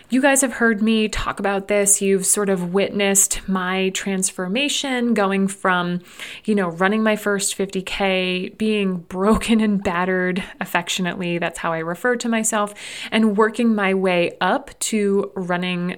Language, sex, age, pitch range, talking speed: English, female, 30-49, 185-225 Hz, 150 wpm